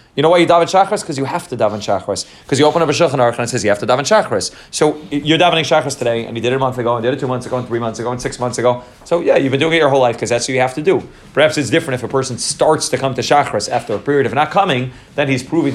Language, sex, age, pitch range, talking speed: English, male, 30-49, 115-140 Hz, 340 wpm